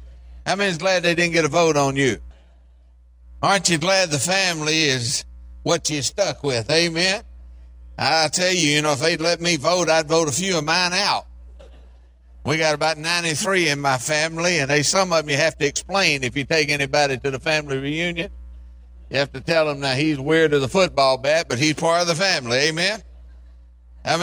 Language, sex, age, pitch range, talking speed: English, male, 60-79, 125-175 Hz, 205 wpm